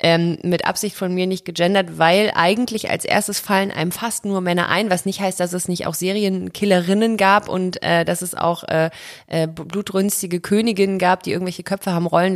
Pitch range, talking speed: 165-195 Hz, 195 wpm